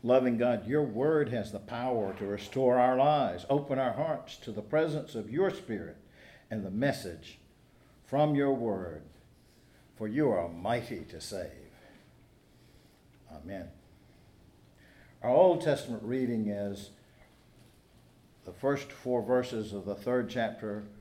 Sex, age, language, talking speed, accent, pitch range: male, 60-79, English, 130 wpm, American, 110-145 Hz